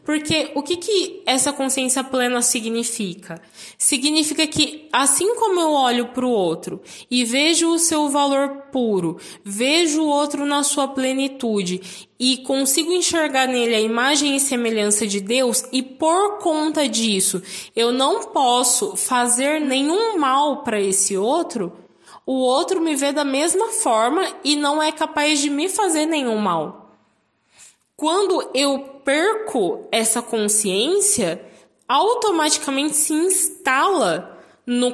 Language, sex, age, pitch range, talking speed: Portuguese, female, 20-39, 240-320 Hz, 130 wpm